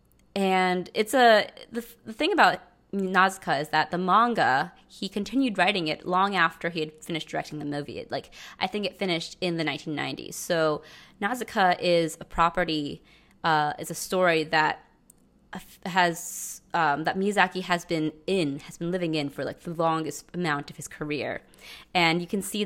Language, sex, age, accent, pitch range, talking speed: English, female, 20-39, American, 155-190 Hz, 175 wpm